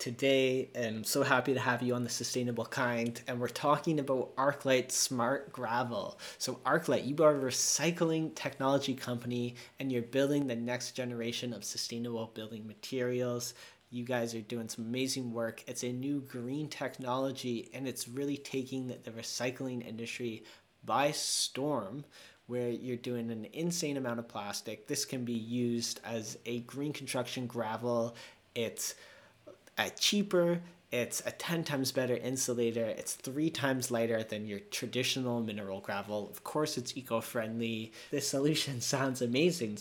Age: 30-49